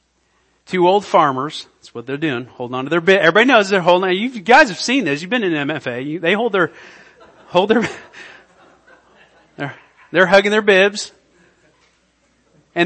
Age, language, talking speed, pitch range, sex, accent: 40-59, English, 175 wpm, 155-225 Hz, male, American